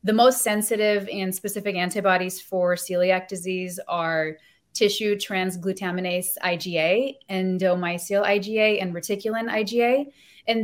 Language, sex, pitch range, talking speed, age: English, female, 185-225 Hz, 105 wpm, 20-39